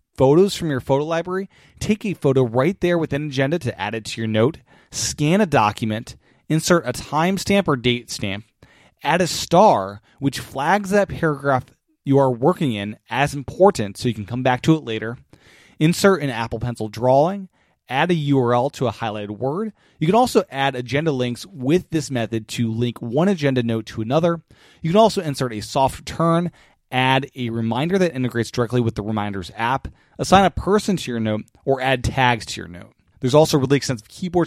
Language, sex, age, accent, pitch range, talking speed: English, male, 30-49, American, 120-155 Hz, 195 wpm